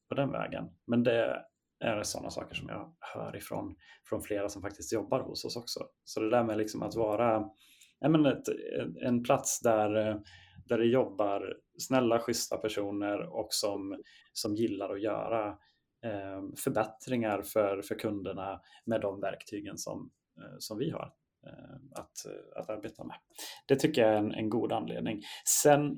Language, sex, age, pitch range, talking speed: Swedish, male, 30-49, 100-120 Hz, 160 wpm